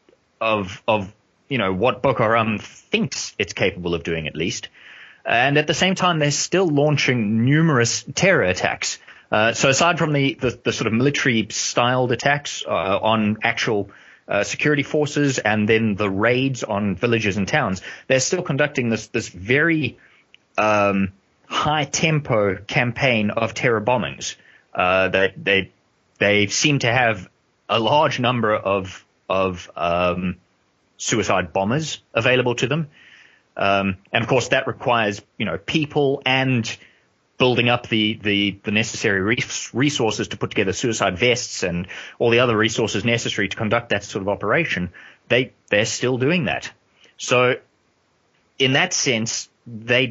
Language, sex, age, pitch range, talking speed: English, male, 20-39, 105-135 Hz, 150 wpm